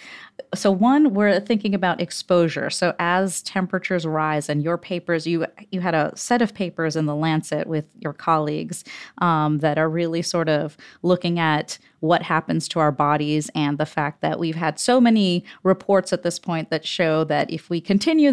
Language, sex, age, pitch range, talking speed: English, female, 30-49, 160-200 Hz, 185 wpm